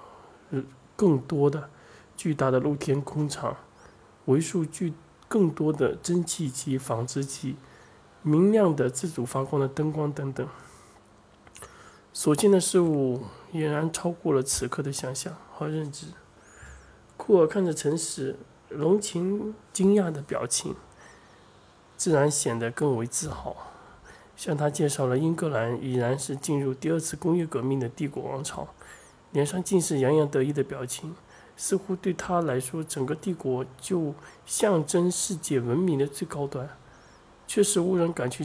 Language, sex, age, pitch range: Chinese, male, 20-39, 135-165 Hz